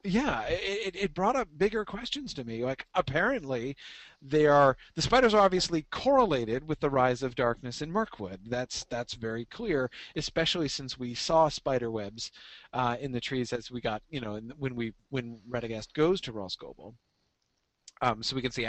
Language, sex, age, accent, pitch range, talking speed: English, male, 40-59, American, 120-175 Hz, 185 wpm